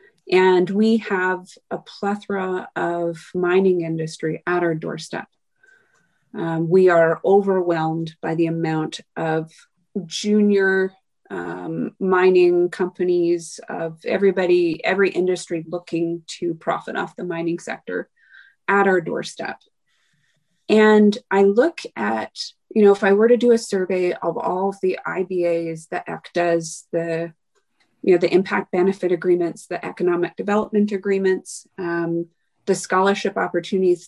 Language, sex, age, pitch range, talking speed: English, female, 30-49, 175-205 Hz, 125 wpm